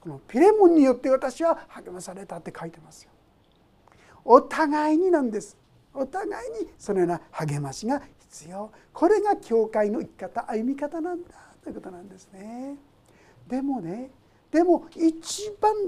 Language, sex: Japanese, male